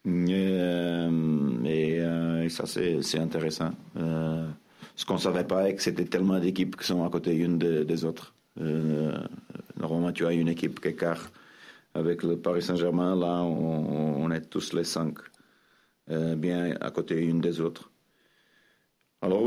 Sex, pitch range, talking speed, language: male, 80-90 Hz, 150 wpm, French